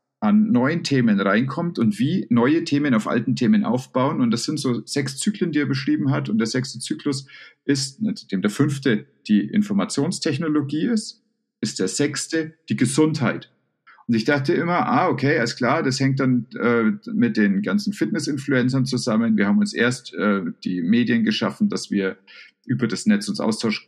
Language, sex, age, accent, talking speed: German, male, 50-69, German, 175 wpm